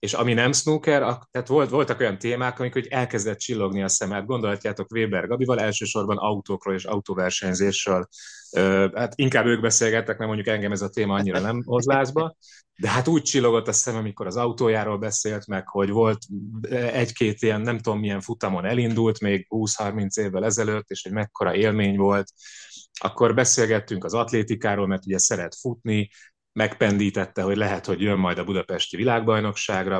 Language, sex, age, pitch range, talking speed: Hungarian, male, 30-49, 95-115 Hz, 165 wpm